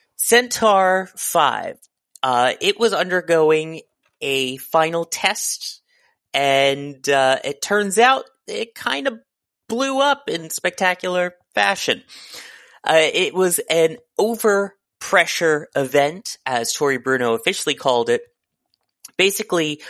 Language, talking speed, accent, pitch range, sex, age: English, 110 wpm, American, 140-185 Hz, male, 30-49